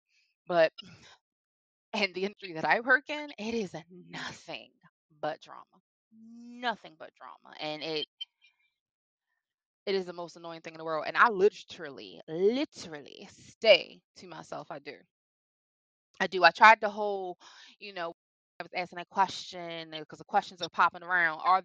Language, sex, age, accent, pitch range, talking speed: English, female, 20-39, American, 170-240 Hz, 155 wpm